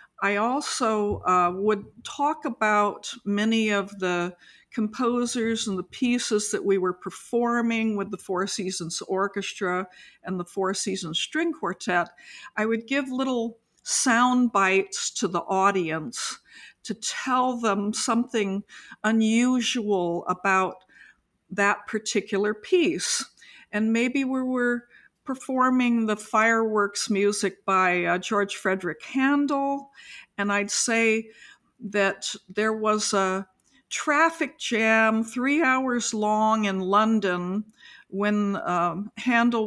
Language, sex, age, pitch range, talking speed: English, female, 50-69, 195-235 Hz, 115 wpm